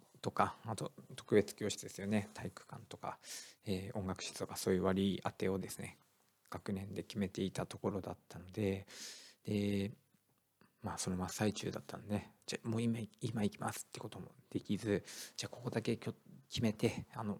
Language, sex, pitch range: Japanese, male, 95-110 Hz